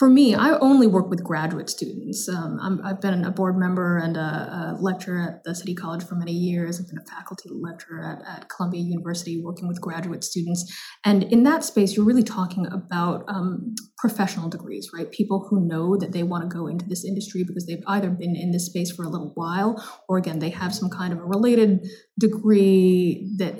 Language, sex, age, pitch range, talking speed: English, female, 30-49, 180-210 Hz, 210 wpm